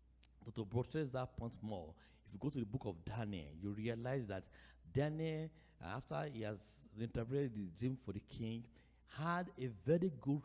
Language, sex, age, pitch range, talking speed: English, male, 60-79, 115-170 Hz, 170 wpm